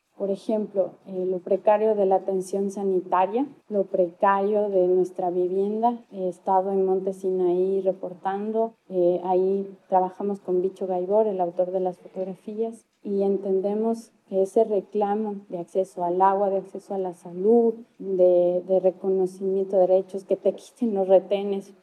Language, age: Spanish, 20-39